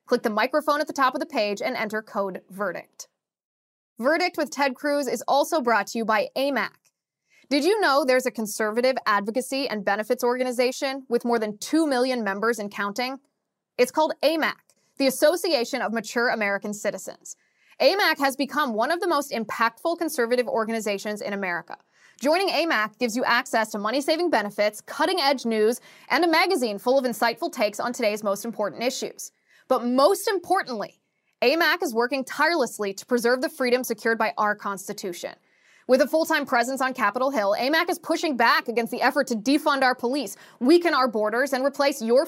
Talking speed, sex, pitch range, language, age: 175 wpm, female, 220-300 Hz, English, 20-39